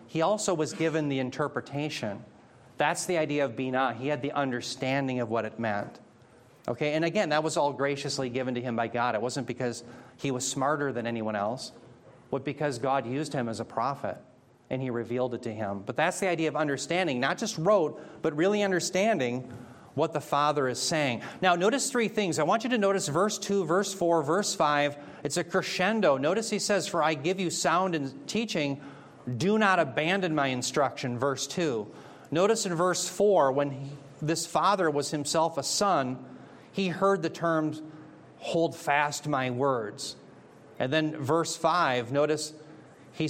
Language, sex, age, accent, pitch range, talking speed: English, male, 40-59, American, 130-170 Hz, 180 wpm